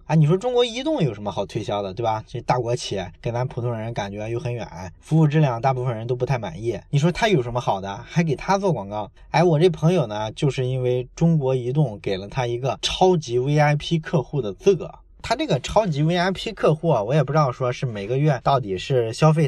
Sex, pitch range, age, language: male, 125-160 Hz, 20-39, Chinese